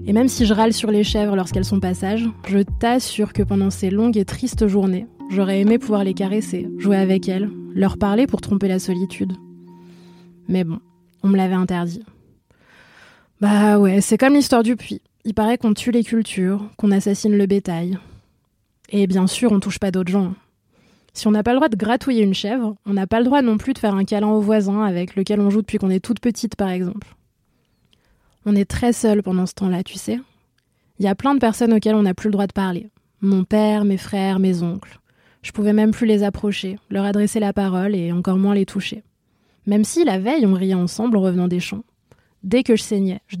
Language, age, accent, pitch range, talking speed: French, 20-39, French, 190-215 Hz, 220 wpm